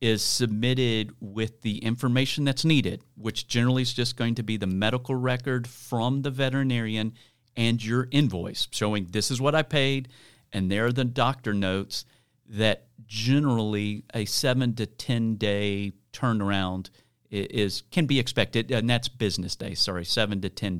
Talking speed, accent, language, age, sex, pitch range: 160 wpm, American, English, 50-69, male, 105-125 Hz